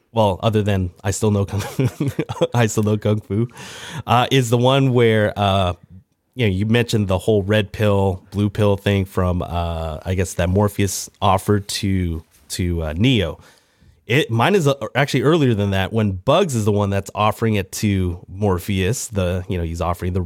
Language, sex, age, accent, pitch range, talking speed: English, male, 30-49, American, 95-120 Hz, 190 wpm